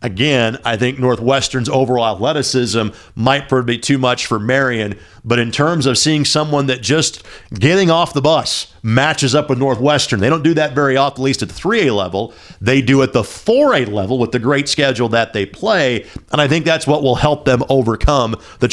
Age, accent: 40-59, American